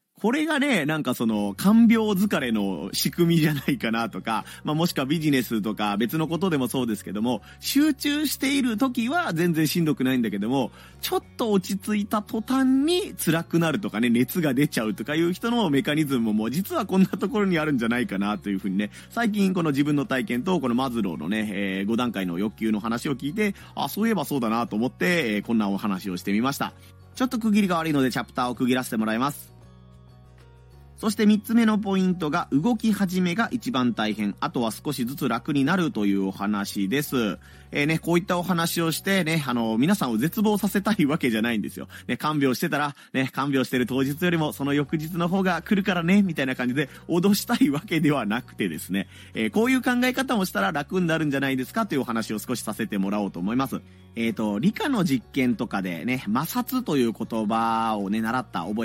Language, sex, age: Japanese, male, 30-49